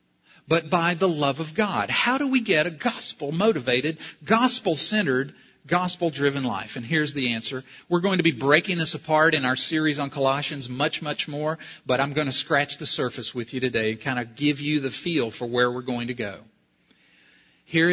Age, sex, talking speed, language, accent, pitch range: 50-69, male, 195 wpm, English, American, 125-170 Hz